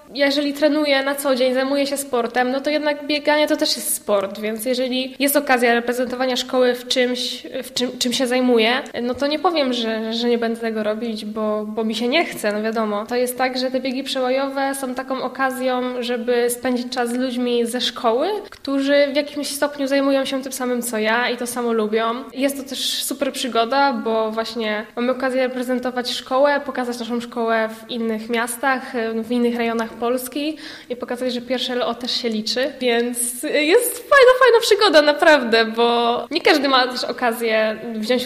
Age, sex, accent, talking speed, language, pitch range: 10-29, female, native, 190 wpm, Polish, 240-280 Hz